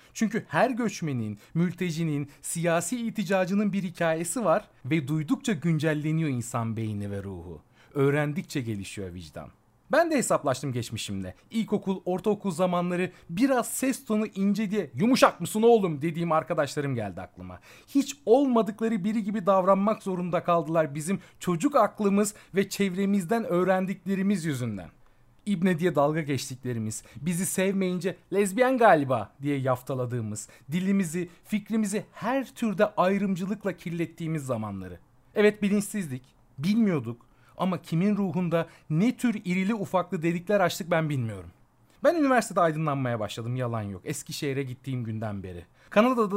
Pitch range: 125-200 Hz